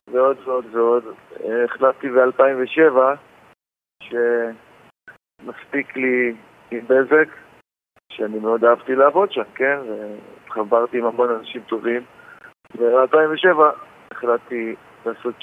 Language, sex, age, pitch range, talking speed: Hebrew, male, 50-69, 115-140 Hz, 85 wpm